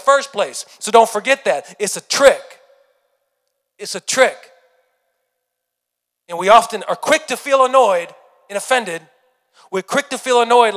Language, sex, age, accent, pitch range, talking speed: English, male, 40-59, American, 175-225 Hz, 150 wpm